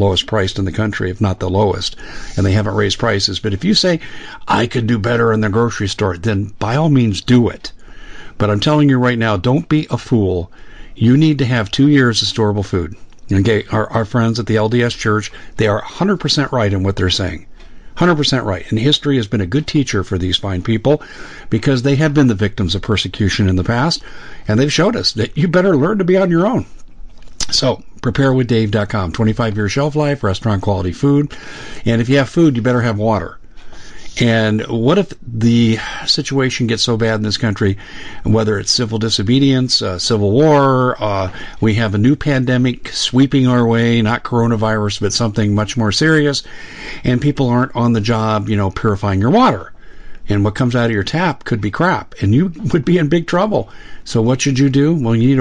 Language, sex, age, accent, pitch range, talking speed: English, male, 50-69, American, 105-135 Hz, 210 wpm